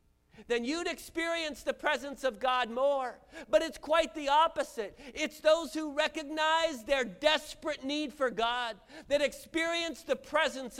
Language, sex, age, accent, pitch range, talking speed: English, male, 40-59, American, 215-305 Hz, 145 wpm